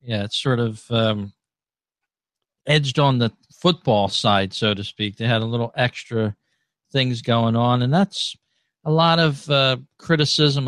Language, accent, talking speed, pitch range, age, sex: English, American, 155 wpm, 115-140 Hz, 50-69, male